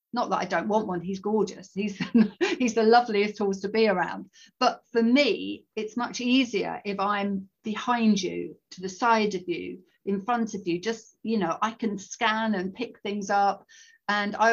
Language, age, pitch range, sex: English, 50-69, 190-225 Hz, female